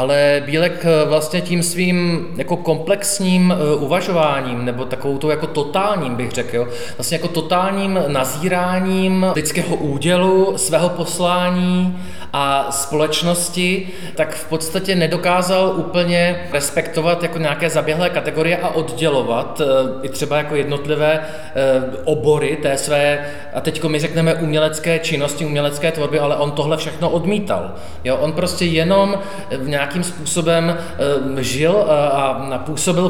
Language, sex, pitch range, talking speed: Czech, male, 145-175 Hz, 120 wpm